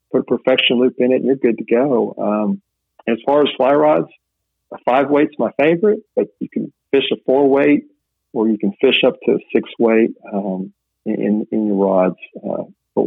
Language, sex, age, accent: English, male, 50-69, American